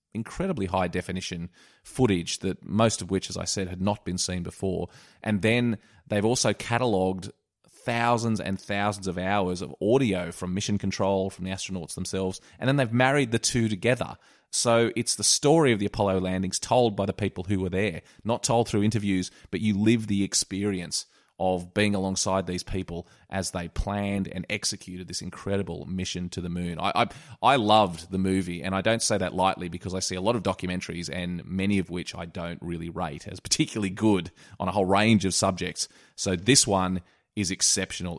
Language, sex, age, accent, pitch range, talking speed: English, male, 30-49, Australian, 90-105 Hz, 190 wpm